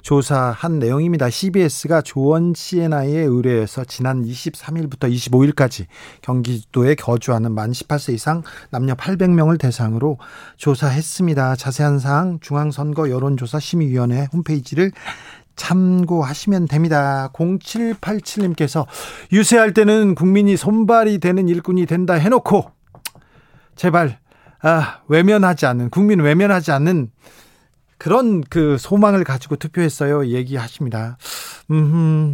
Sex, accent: male, native